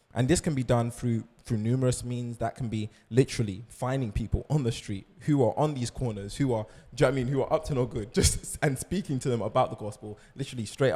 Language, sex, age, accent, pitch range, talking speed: English, male, 20-39, British, 110-130 Hz, 255 wpm